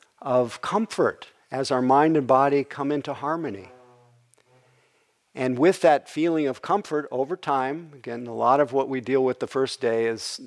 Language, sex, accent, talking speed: English, male, American, 170 wpm